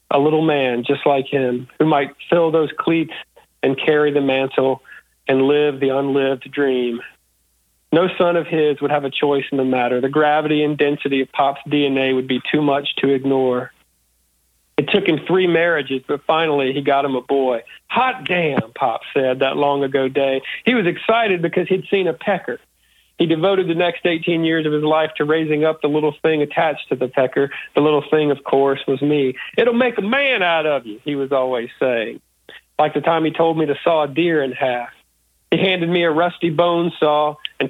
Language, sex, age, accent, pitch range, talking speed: English, male, 40-59, American, 135-165 Hz, 205 wpm